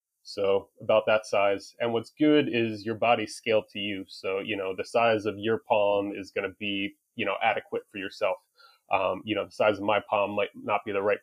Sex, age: male, 30-49